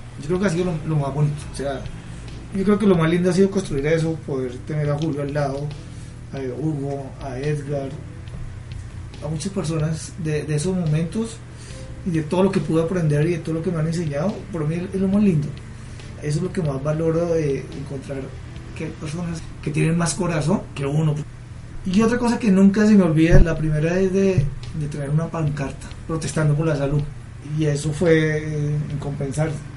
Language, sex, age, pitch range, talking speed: Spanish, male, 30-49, 135-165 Hz, 200 wpm